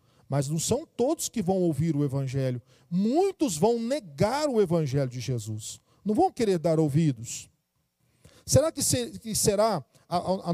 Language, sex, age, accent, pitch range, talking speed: Portuguese, male, 40-59, Brazilian, 175-270 Hz, 140 wpm